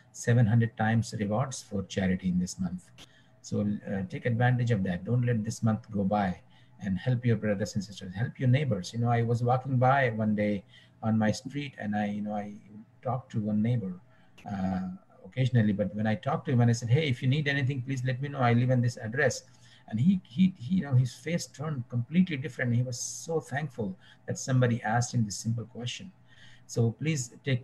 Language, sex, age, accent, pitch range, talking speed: English, male, 60-79, Indian, 100-125 Hz, 215 wpm